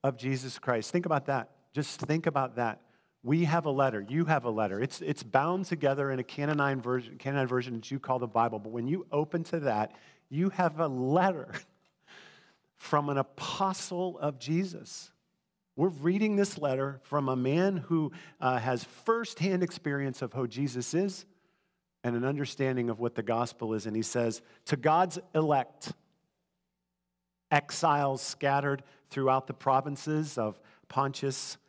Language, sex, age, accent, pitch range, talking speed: English, male, 50-69, American, 125-165 Hz, 160 wpm